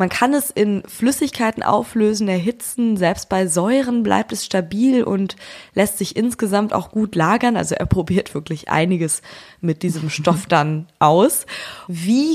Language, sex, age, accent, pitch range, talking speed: German, female, 20-39, German, 170-210 Hz, 150 wpm